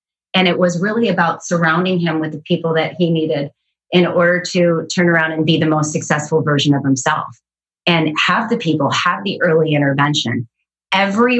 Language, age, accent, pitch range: English, 30-49, American, 155-185 Hz